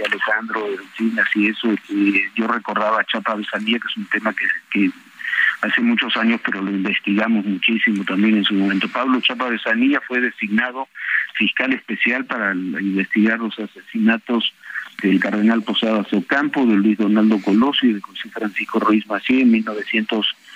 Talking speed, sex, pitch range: 165 wpm, male, 105-125 Hz